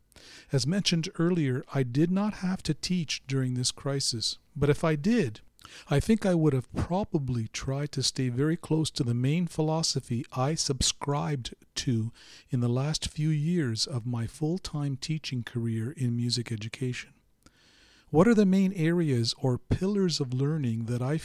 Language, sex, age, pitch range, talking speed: English, male, 50-69, 120-155 Hz, 165 wpm